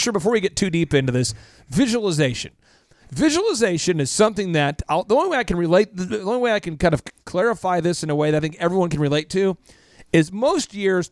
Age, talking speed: 40-59, 220 wpm